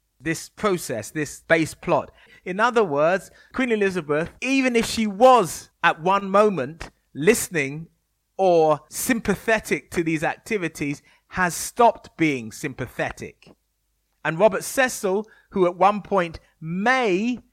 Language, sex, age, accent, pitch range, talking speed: English, male, 30-49, British, 155-210 Hz, 120 wpm